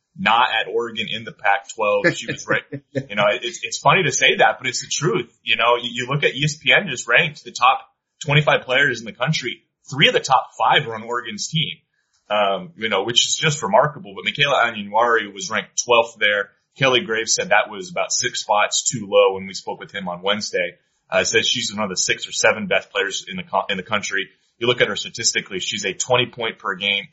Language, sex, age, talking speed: English, male, 20-39, 235 wpm